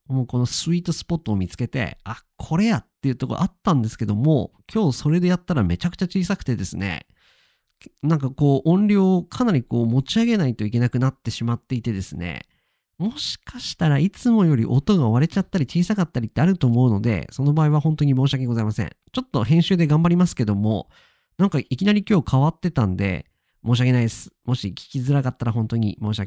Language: Japanese